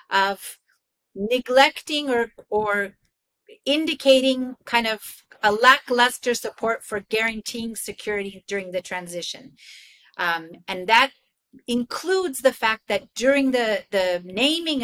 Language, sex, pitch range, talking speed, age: English, female, 205-265 Hz, 110 wpm, 50-69